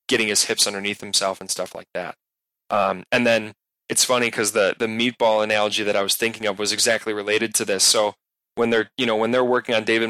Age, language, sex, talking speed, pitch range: 10-29, English, male, 230 wpm, 105-120 Hz